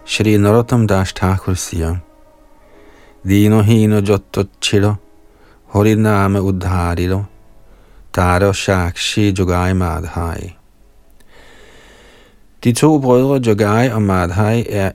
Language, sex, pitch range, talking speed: Danish, male, 95-110 Hz, 50 wpm